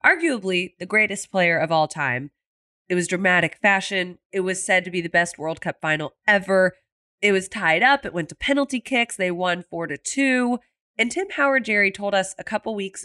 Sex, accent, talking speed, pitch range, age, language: female, American, 200 wpm, 175-240 Hz, 20-39, English